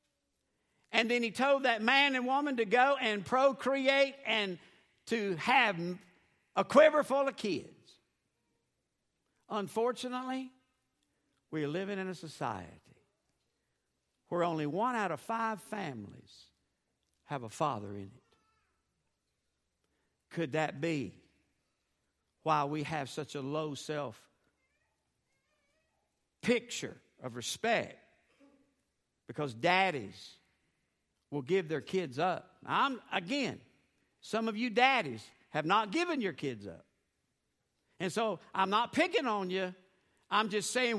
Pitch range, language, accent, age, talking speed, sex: 165-275 Hz, English, American, 60-79, 115 wpm, male